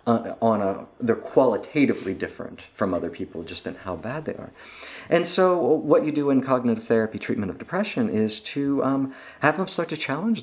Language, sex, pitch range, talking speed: Bulgarian, male, 95-130 Hz, 195 wpm